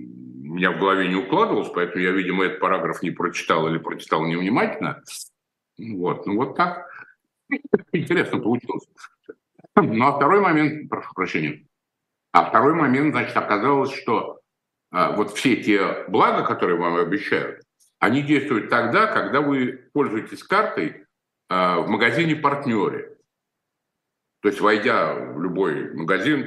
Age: 60-79